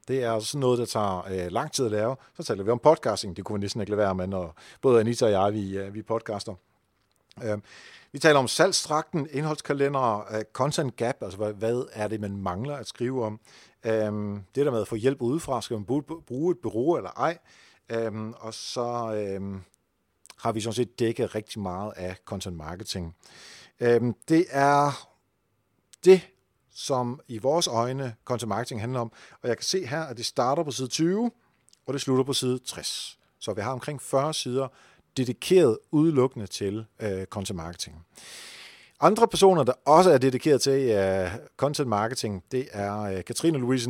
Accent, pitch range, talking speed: native, 105-135 Hz, 185 wpm